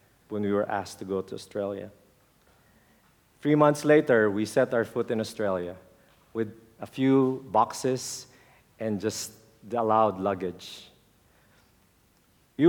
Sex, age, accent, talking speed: male, 50-69, Filipino, 130 wpm